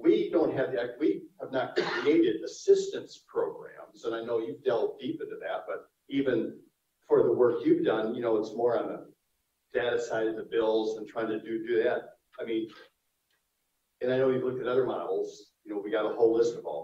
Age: 50-69